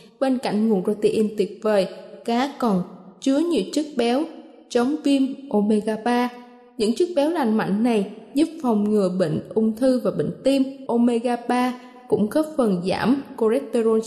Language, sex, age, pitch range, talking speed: Vietnamese, female, 20-39, 220-275 Hz, 160 wpm